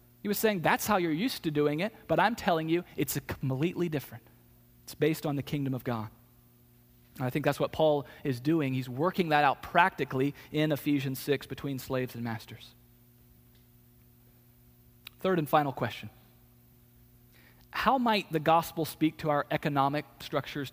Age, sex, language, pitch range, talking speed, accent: 40-59, male, English, 120-175 Hz, 165 wpm, American